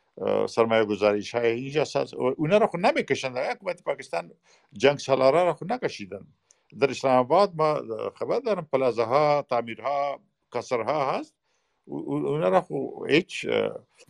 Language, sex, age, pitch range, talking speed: Persian, male, 50-69, 115-185 Hz, 115 wpm